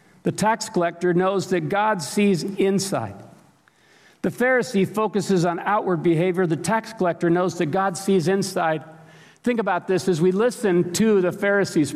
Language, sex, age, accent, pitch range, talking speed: English, male, 50-69, American, 150-195 Hz, 155 wpm